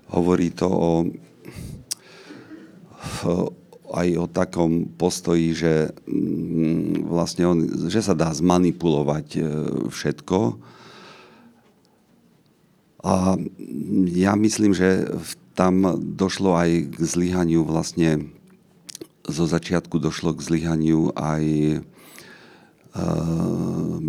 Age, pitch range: 50-69, 75-85 Hz